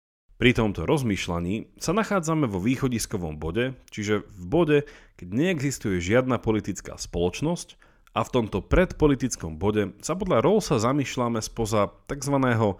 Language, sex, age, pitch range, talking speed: Slovak, male, 40-59, 90-135 Hz, 125 wpm